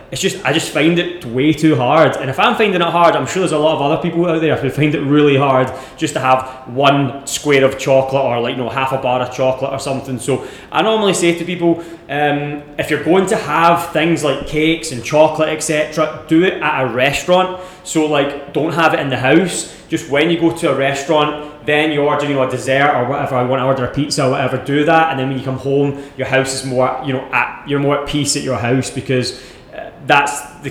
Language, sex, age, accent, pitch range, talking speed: English, male, 20-39, British, 135-160 Hz, 250 wpm